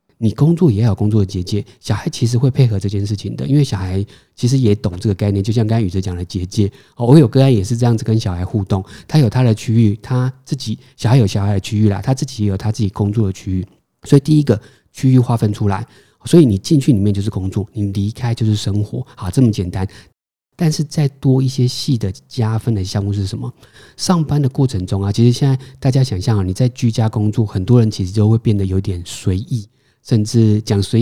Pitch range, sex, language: 100-130 Hz, male, Chinese